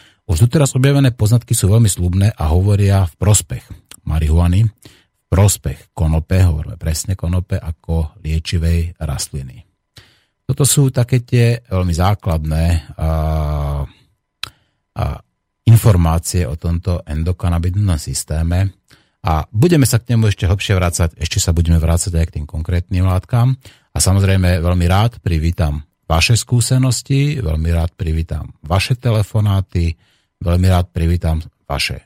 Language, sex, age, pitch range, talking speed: Slovak, male, 30-49, 80-105 Hz, 125 wpm